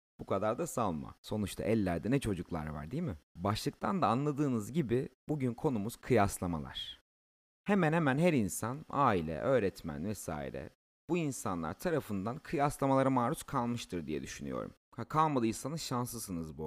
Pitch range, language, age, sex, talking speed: 100-145 Hz, Turkish, 30-49, male, 130 wpm